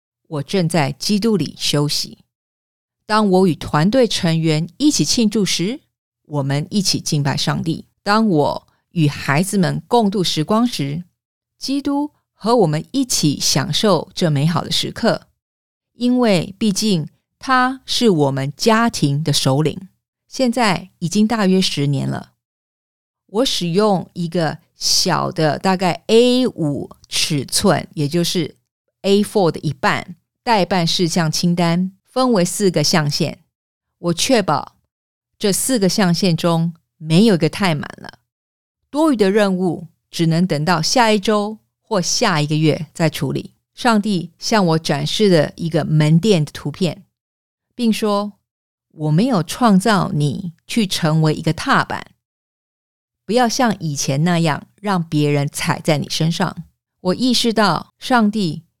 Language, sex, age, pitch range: English, female, 50-69, 155-210 Hz